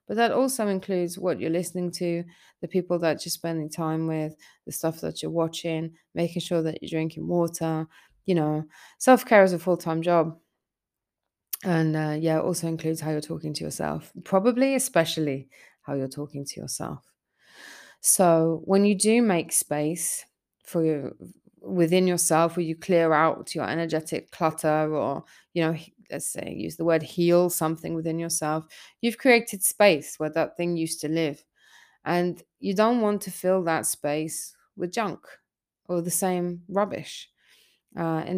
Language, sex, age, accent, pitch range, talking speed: English, female, 20-39, British, 160-195 Hz, 165 wpm